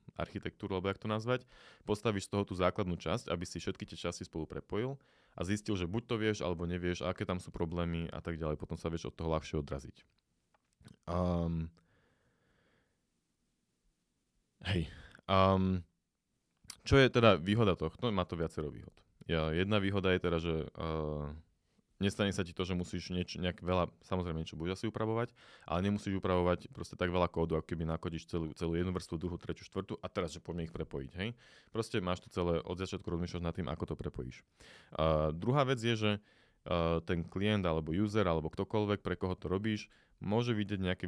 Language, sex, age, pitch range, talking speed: Slovak, male, 20-39, 85-100 Hz, 185 wpm